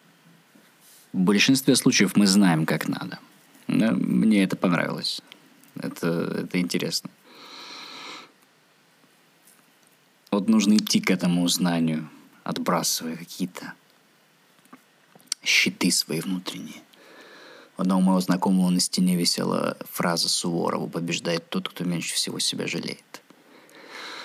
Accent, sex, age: native, male, 20-39